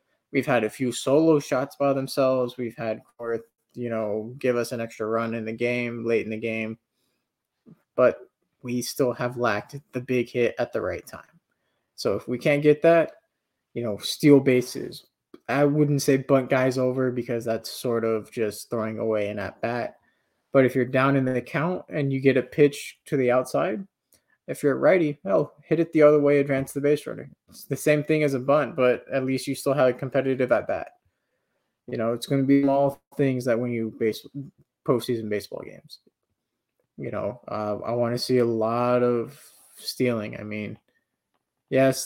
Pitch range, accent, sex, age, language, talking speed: 115-140 Hz, American, male, 20-39, English, 195 wpm